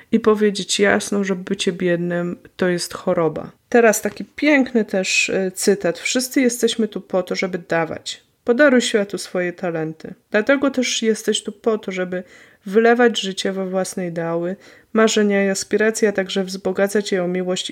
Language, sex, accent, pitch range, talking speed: Polish, female, native, 195-240 Hz, 155 wpm